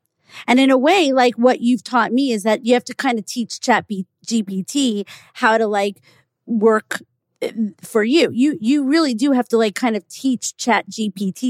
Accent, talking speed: American, 200 wpm